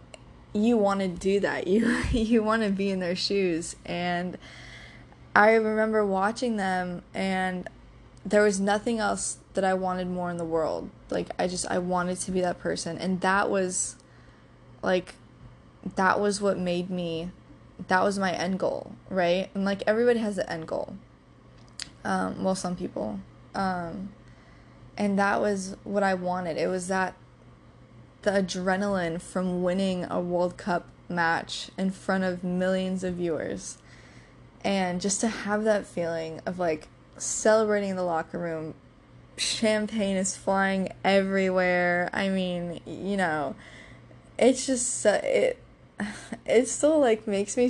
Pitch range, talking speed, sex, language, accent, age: 175-205 Hz, 150 wpm, female, English, American, 20-39